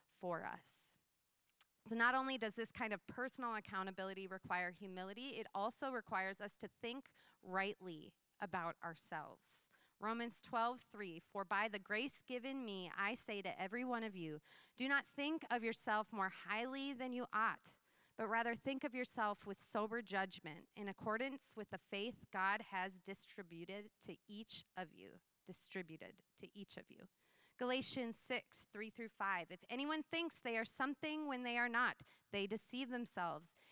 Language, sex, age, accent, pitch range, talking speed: English, female, 30-49, American, 190-250 Hz, 160 wpm